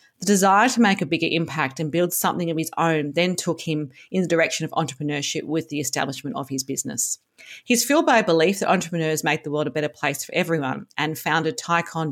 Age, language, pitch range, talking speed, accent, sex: 40-59, English, 150-175 Hz, 225 wpm, Australian, female